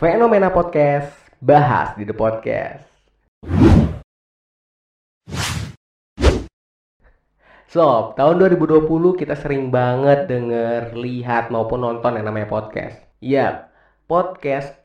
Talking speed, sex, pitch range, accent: 90 wpm, male, 110-145 Hz, native